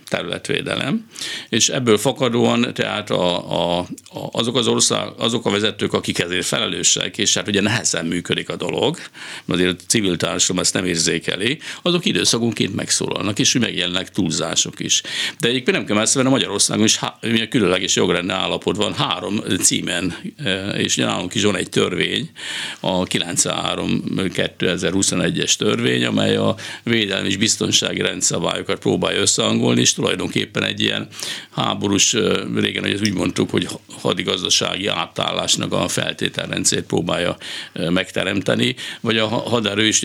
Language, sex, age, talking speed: Hungarian, male, 60-79, 140 wpm